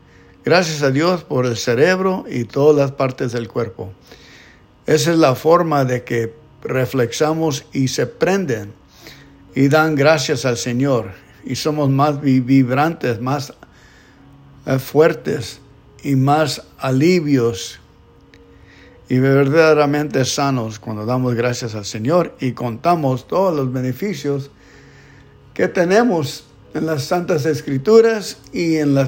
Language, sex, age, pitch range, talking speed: English, male, 60-79, 120-155 Hz, 120 wpm